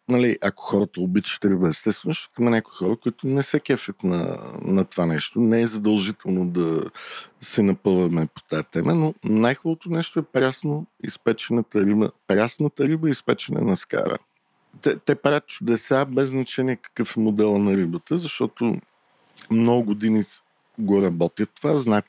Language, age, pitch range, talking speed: Bulgarian, 50-69, 105-135 Hz, 160 wpm